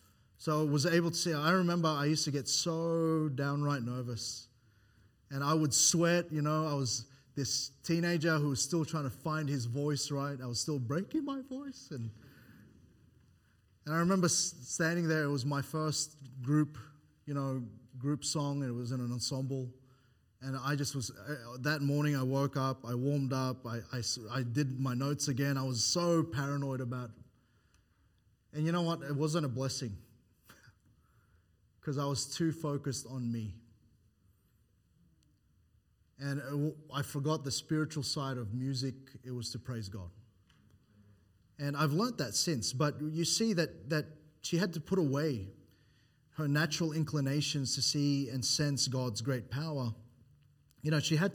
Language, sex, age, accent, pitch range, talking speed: English, male, 20-39, Australian, 120-150 Hz, 170 wpm